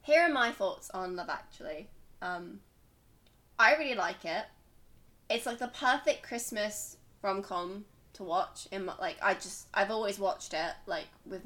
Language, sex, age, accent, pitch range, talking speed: English, female, 20-39, British, 185-235 Hz, 160 wpm